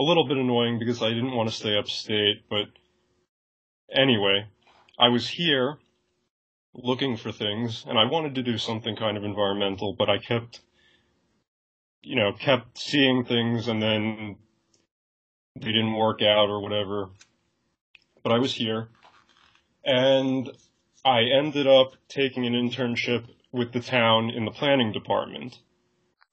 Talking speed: 140 wpm